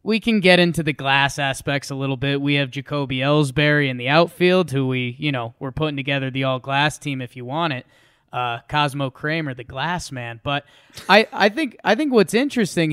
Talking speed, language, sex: 215 wpm, English, male